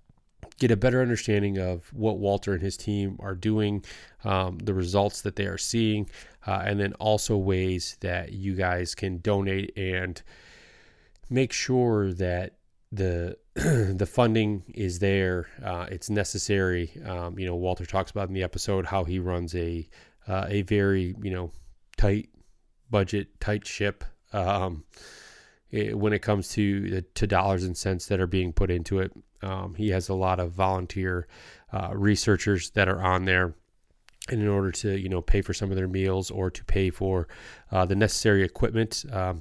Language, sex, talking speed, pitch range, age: English, male, 175 wpm, 90-105 Hz, 20-39